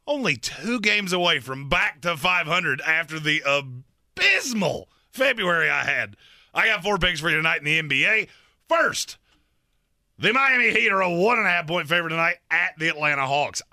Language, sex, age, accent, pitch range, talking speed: English, male, 30-49, American, 120-165 Hz, 180 wpm